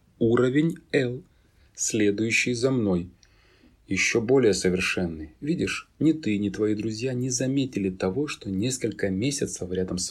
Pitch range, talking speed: 90-125 Hz, 130 wpm